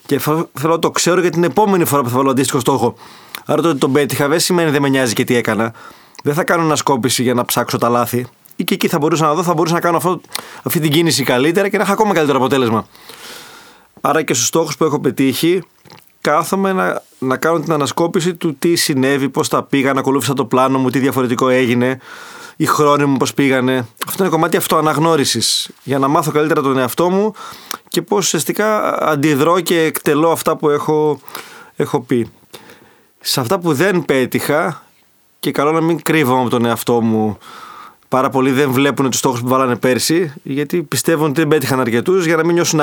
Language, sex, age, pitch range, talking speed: Greek, male, 30-49, 130-175 Hz, 205 wpm